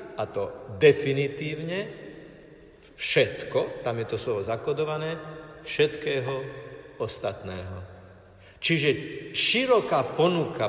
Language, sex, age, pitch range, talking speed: Slovak, male, 50-69, 120-150 Hz, 80 wpm